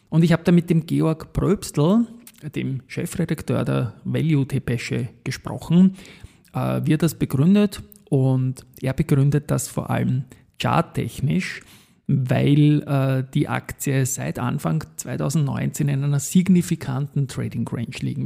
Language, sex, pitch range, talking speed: German, male, 130-160 Hz, 115 wpm